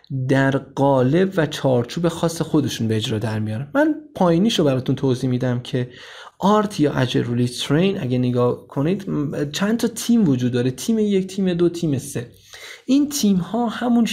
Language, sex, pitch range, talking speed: Persian, male, 130-175 Hz, 165 wpm